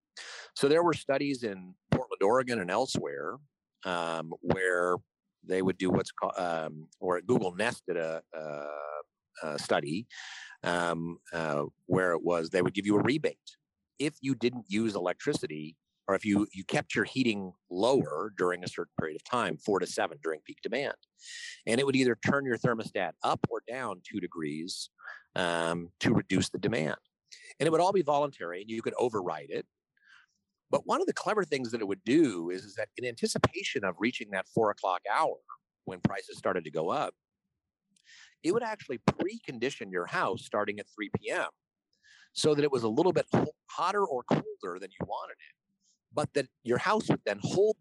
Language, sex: English, male